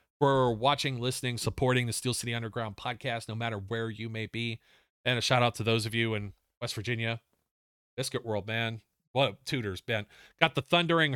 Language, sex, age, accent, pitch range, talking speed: English, male, 40-59, American, 115-145 Hz, 190 wpm